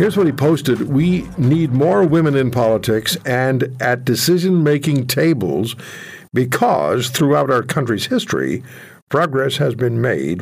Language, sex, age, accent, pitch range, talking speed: English, male, 60-79, American, 125-160 Hz, 130 wpm